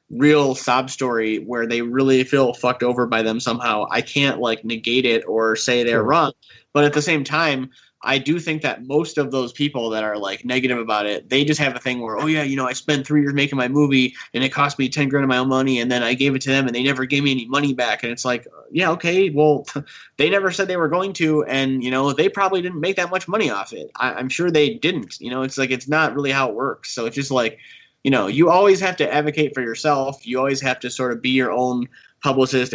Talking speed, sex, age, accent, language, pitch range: 265 wpm, male, 20-39, American, English, 125-150 Hz